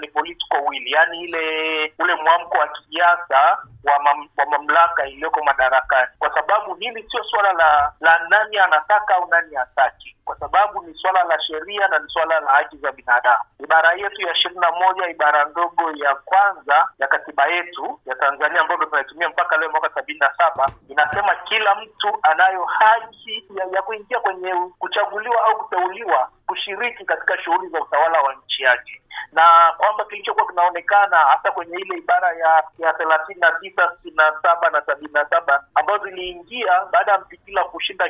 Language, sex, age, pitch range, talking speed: Swahili, male, 50-69, 155-205 Hz, 150 wpm